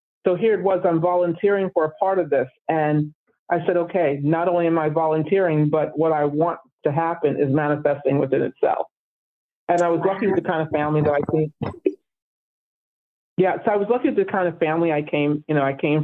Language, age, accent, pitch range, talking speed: English, 50-69, American, 150-175 Hz, 205 wpm